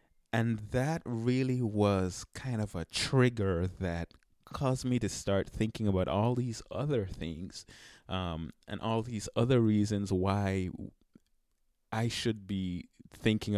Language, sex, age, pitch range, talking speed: English, male, 20-39, 90-110 Hz, 135 wpm